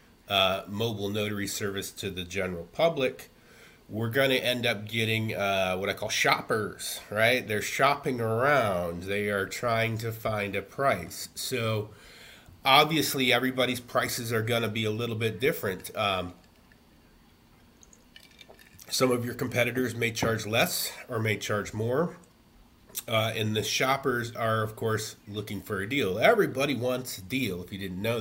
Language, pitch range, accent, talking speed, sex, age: English, 100-120 Hz, American, 155 wpm, male, 30-49